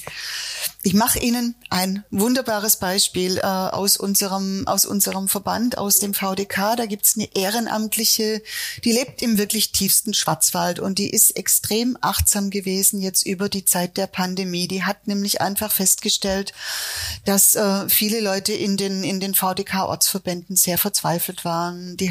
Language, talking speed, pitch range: German, 150 wpm, 190-220 Hz